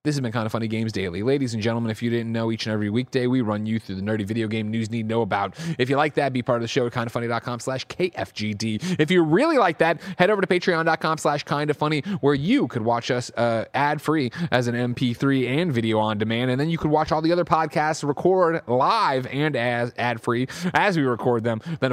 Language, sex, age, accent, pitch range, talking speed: English, male, 30-49, American, 110-150 Hz, 240 wpm